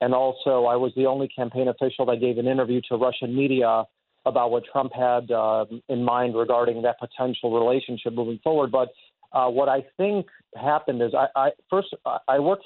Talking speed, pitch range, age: 190 wpm, 120-140 Hz, 40-59